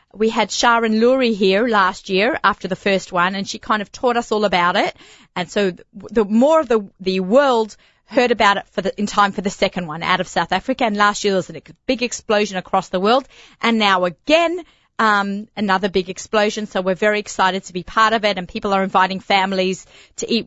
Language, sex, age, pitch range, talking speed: English, female, 30-49, 185-230 Hz, 225 wpm